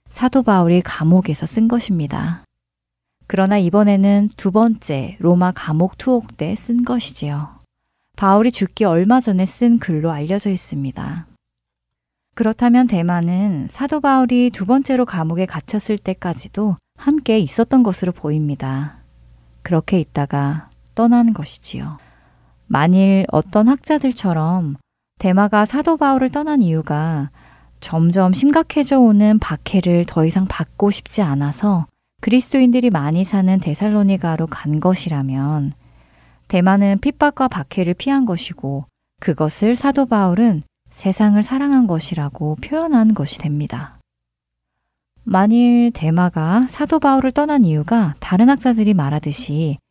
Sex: female